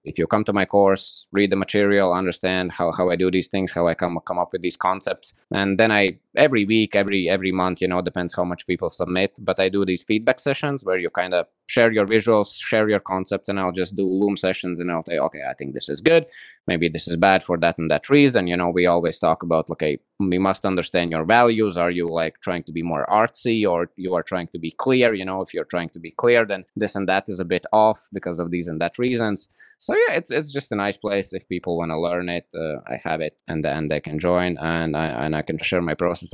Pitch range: 90-105 Hz